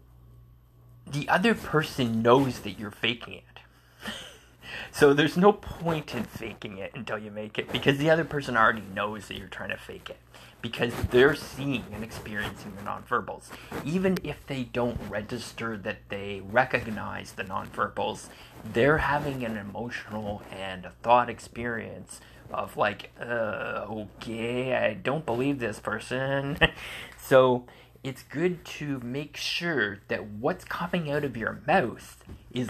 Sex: male